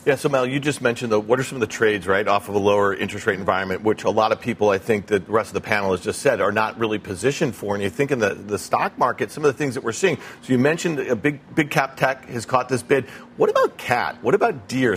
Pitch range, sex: 130-155 Hz, male